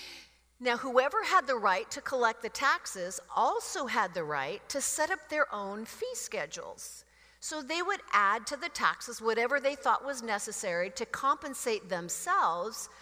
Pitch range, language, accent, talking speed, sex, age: 205-300 Hz, English, American, 160 wpm, female, 50-69